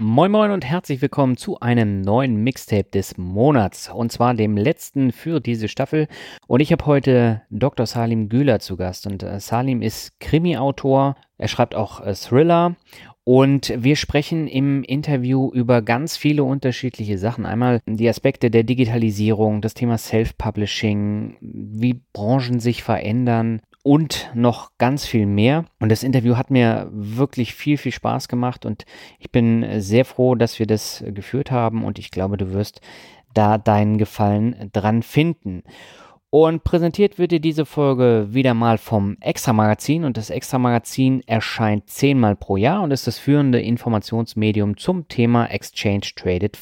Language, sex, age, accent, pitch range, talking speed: German, male, 30-49, German, 110-135 Hz, 155 wpm